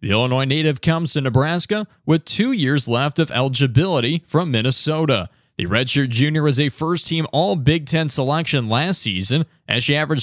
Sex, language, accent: male, English, American